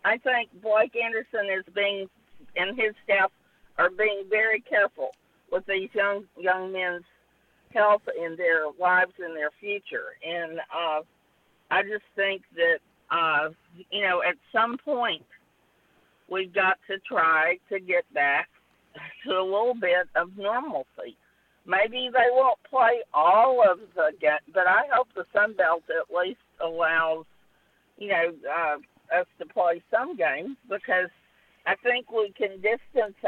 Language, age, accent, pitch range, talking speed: English, 50-69, American, 175-230 Hz, 145 wpm